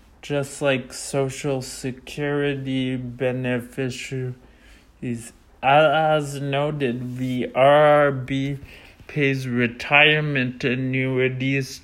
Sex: male